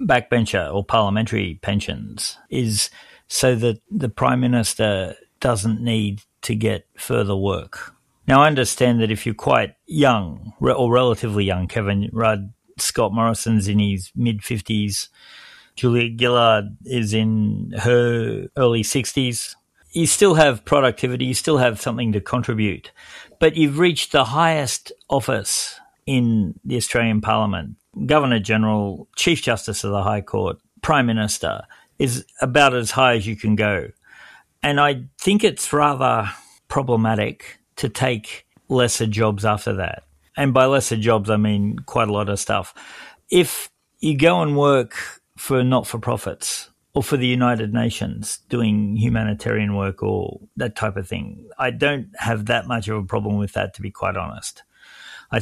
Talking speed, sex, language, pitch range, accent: 150 wpm, male, English, 105-130 Hz, Australian